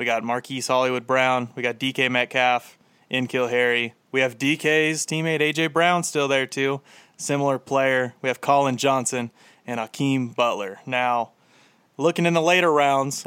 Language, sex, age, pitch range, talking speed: English, male, 30-49, 130-160 Hz, 160 wpm